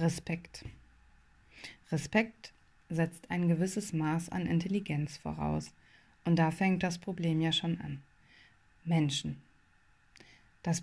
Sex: female